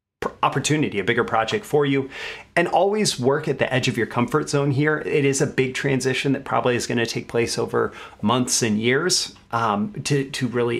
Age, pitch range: 30-49, 115-135 Hz